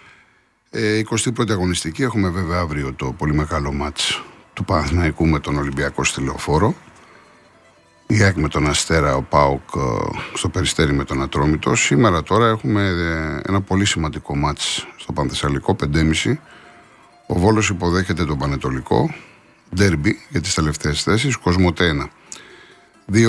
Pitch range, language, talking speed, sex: 80-105 Hz, Greek, 125 wpm, male